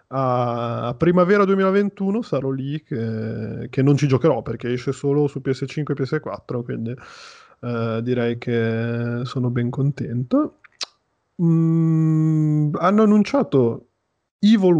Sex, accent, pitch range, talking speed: male, native, 120-145 Hz, 115 wpm